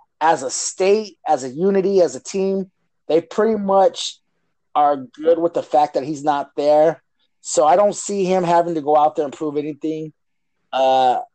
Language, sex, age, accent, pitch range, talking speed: English, male, 30-49, American, 150-190 Hz, 185 wpm